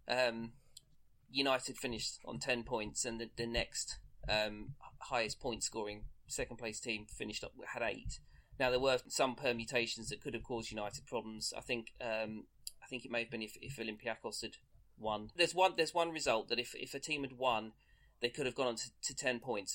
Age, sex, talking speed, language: 30-49, male, 200 wpm, English